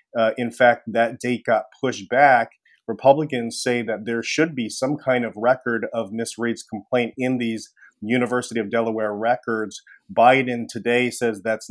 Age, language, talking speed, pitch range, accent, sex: 30-49, English, 165 wpm, 115-130 Hz, American, male